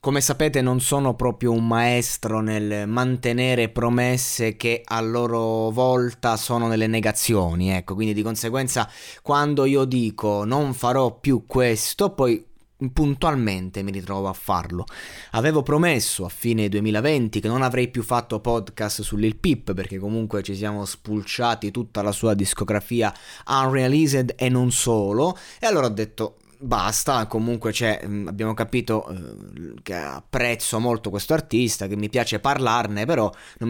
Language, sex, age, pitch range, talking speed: Italian, male, 20-39, 105-135 Hz, 145 wpm